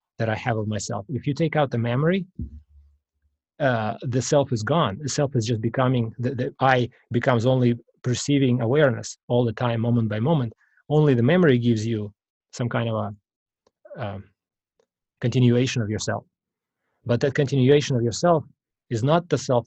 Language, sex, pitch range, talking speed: English, male, 115-135 Hz, 170 wpm